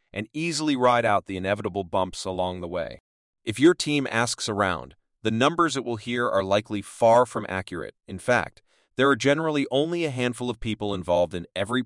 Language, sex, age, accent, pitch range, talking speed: English, male, 30-49, American, 95-130 Hz, 190 wpm